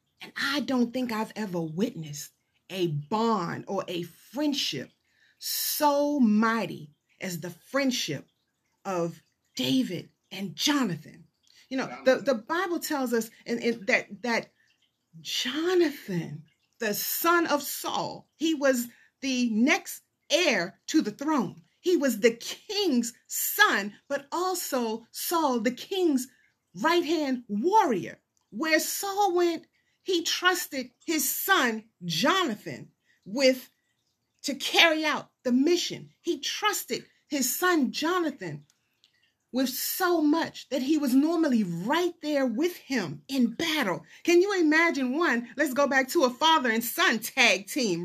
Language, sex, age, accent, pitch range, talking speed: English, female, 40-59, American, 215-320 Hz, 130 wpm